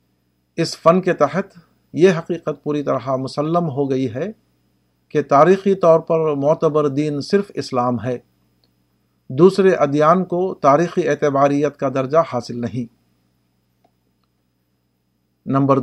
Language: Urdu